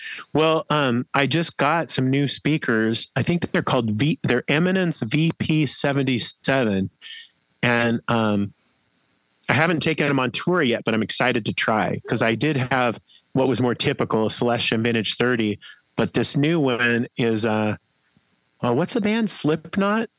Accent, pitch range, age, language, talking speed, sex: American, 120-160 Hz, 40-59, English, 160 wpm, male